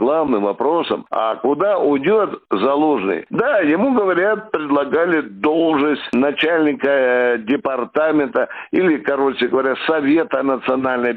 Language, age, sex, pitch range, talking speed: Russian, 60-79, male, 145-200 Hz, 95 wpm